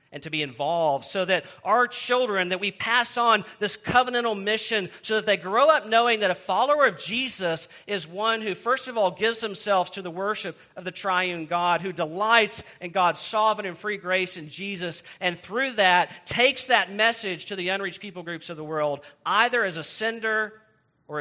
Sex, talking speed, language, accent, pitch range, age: male, 200 wpm, English, American, 150-195 Hz, 40-59